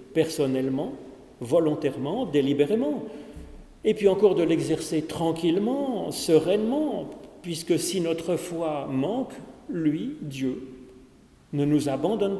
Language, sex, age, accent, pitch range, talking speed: French, male, 40-59, French, 140-185 Hz, 95 wpm